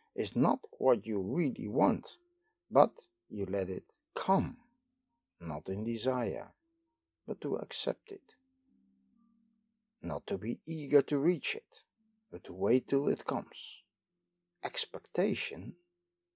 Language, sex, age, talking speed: English, male, 60-79, 115 wpm